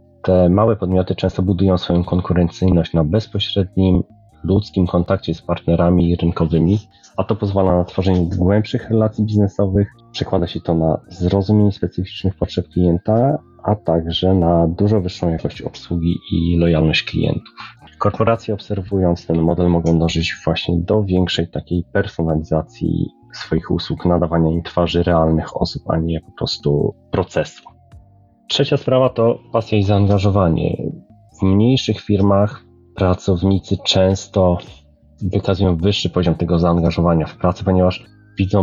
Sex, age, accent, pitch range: male, 30-49, native, 85-100 Hz